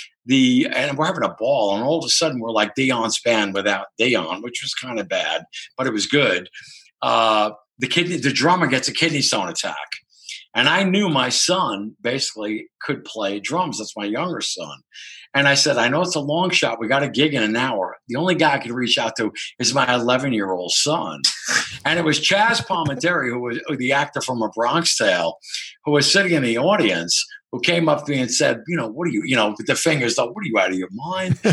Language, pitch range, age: English, 125-170 Hz, 50-69